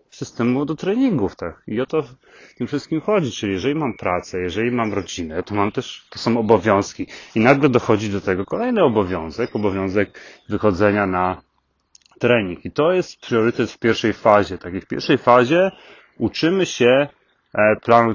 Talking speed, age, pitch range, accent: 165 wpm, 30-49, 95-115 Hz, native